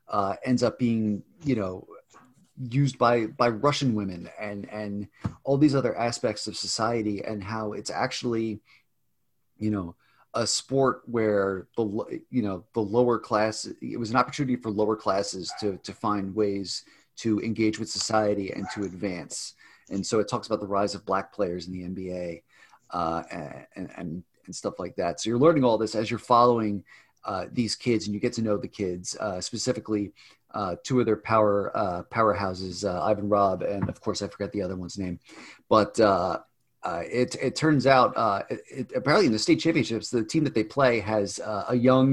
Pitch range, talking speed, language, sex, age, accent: 100-125 Hz, 190 wpm, English, male, 30-49, American